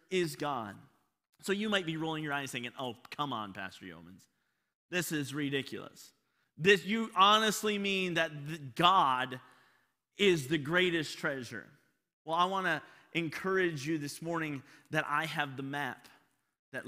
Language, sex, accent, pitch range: English, male, American, 145-200 Hz